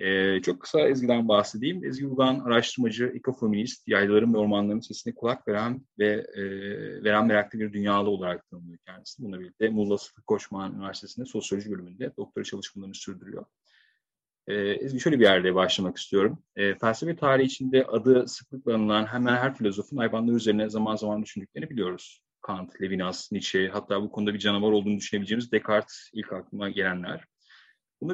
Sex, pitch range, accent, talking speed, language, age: male, 100-130 Hz, native, 155 wpm, Turkish, 30-49